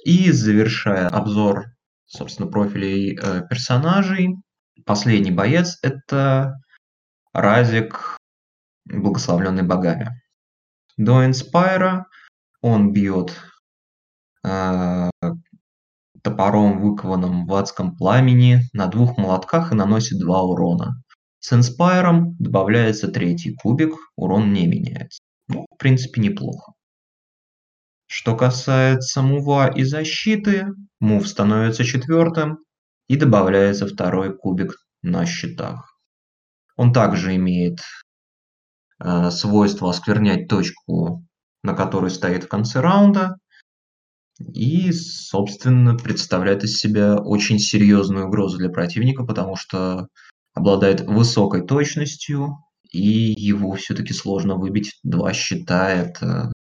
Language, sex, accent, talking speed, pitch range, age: Russian, male, native, 95 wpm, 95-135 Hz, 20-39